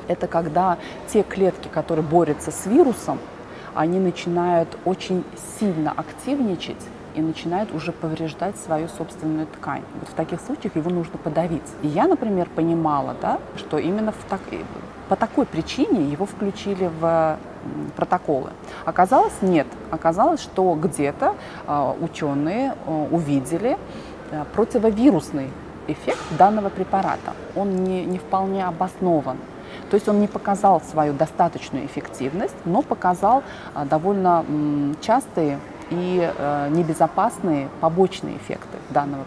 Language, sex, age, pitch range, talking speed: Russian, female, 30-49, 155-195 Hz, 115 wpm